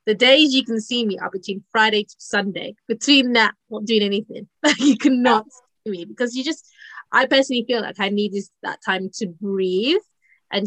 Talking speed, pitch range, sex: 190 wpm, 190-235 Hz, female